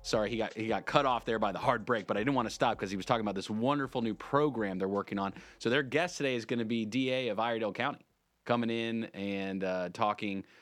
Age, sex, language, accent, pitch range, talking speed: 30-49, male, English, American, 100-130 Hz, 265 wpm